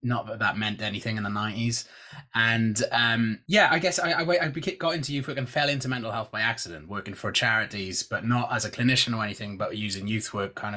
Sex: male